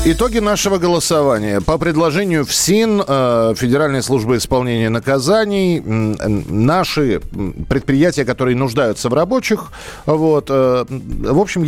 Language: Russian